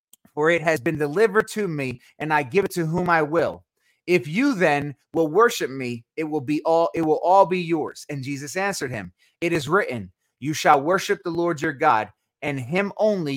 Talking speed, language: 210 wpm, English